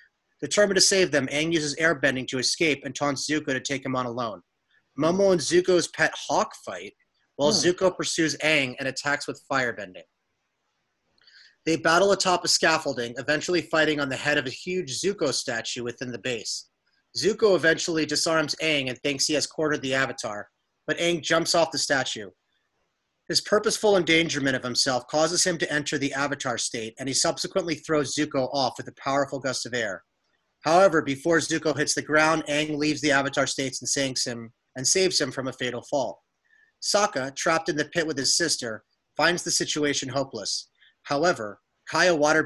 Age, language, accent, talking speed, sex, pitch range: 30-49, English, American, 175 wpm, male, 135-160 Hz